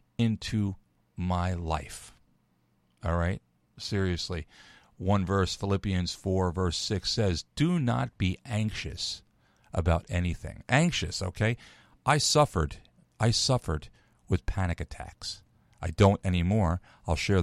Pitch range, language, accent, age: 85-110 Hz, English, American, 50-69